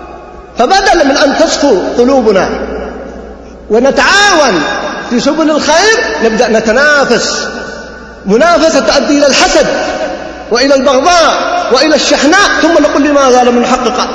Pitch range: 220-295 Hz